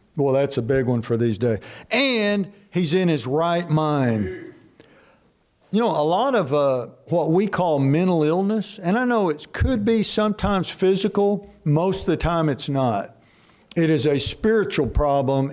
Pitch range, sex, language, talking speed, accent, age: 145-195 Hz, male, English, 170 wpm, American, 60-79